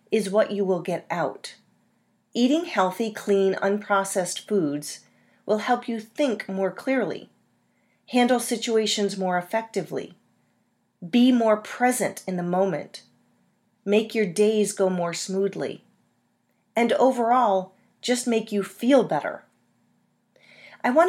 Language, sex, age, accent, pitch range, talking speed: English, female, 40-59, American, 185-240 Hz, 120 wpm